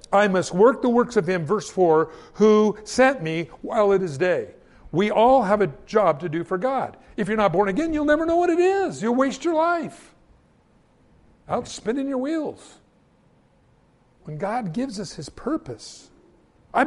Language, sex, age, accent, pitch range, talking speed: English, male, 50-69, American, 175-250 Hz, 180 wpm